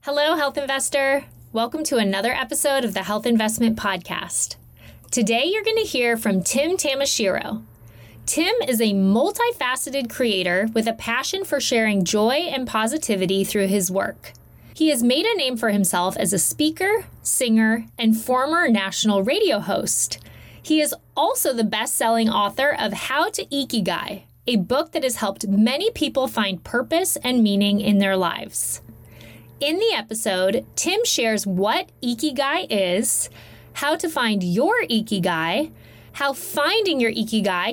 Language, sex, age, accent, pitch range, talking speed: English, female, 20-39, American, 205-290 Hz, 145 wpm